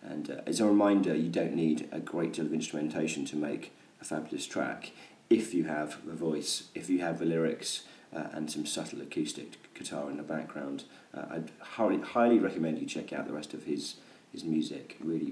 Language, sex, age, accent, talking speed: English, male, 30-49, British, 205 wpm